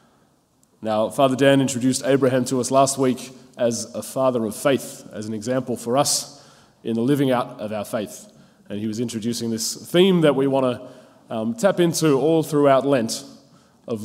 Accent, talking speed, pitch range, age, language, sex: Australian, 180 wpm, 115-140 Hz, 20-39, English, male